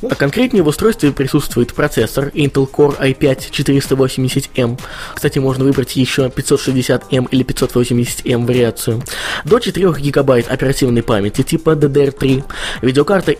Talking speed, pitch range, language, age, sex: 110 wpm, 125-155 Hz, Russian, 20-39, male